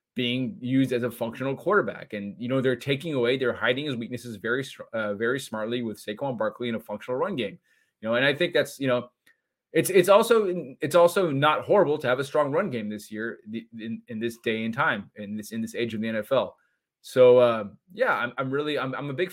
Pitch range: 115-145 Hz